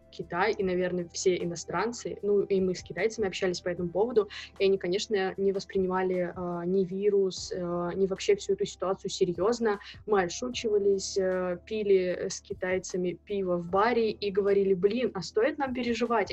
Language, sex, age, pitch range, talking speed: Russian, female, 20-39, 195-240 Hz, 160 wpm